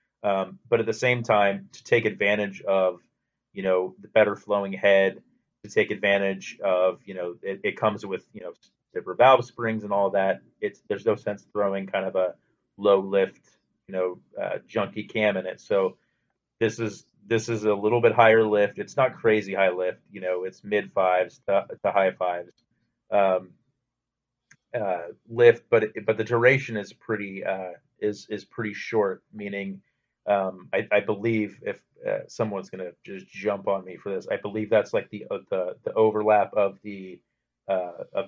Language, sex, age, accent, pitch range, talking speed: English, male, 30-49, American, 95-115 Hz, 185 wpm